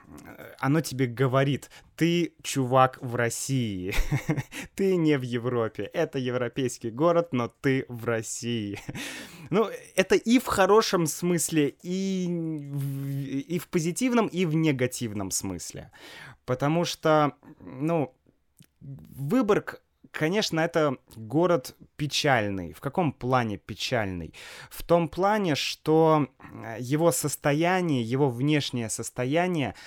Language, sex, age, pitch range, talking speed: Russian, male, 20-39, 115-150 Hz, 105 wpm